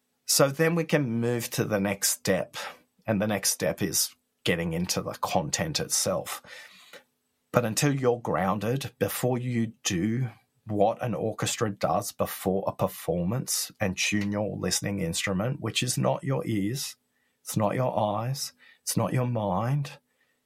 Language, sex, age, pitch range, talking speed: English, male, 40-59, 100-135 Hz, 150 wpm